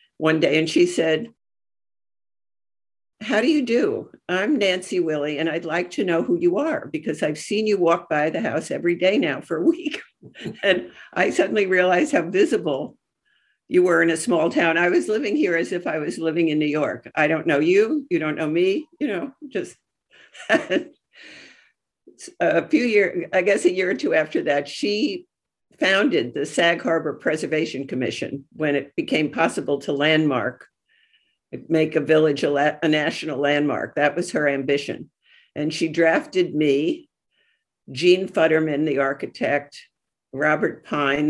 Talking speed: 165 wpm